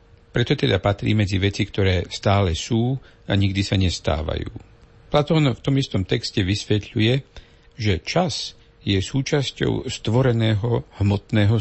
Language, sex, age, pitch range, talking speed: Slovak, male, 60-79, 95-120 Hz, 125 wpm